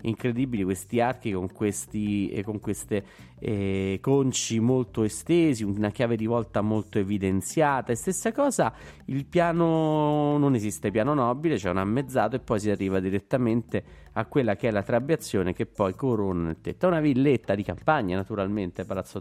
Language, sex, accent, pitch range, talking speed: Italian, male, native, 95-125 Hz, 165 wpm